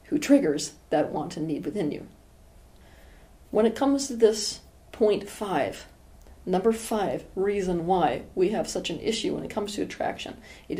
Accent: American